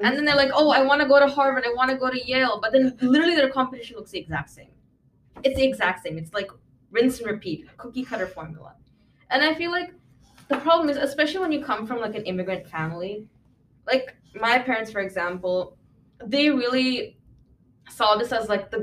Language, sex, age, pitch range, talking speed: English, female, 10-29, 175-255 Hz, 210 wpm